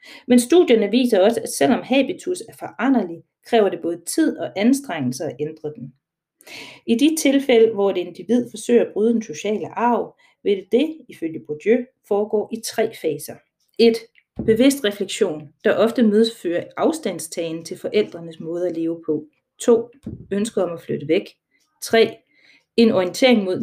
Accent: native